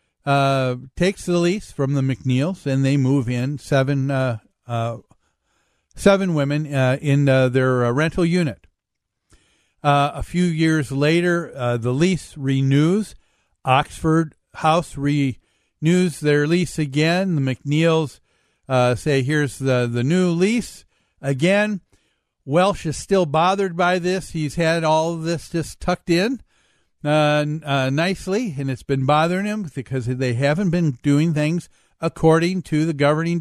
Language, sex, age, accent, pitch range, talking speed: English, male, 50-69, American, 135-175 Hz, 140 wpm